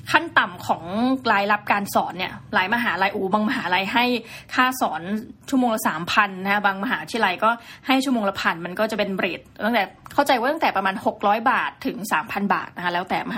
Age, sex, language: 20-39, female, Thai